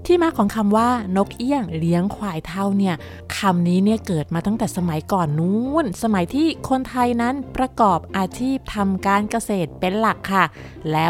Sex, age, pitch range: female, 20-39, 190-245 Hz